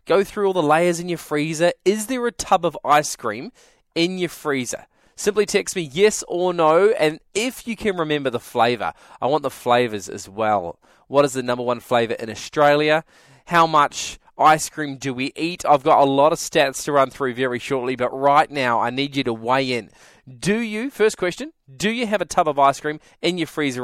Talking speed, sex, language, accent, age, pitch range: 220 wpm, male, English, Australian, 20-39, 130-175 Hz